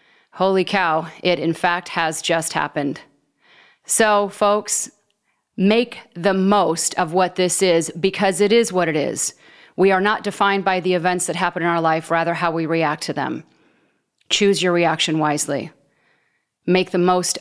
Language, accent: English, American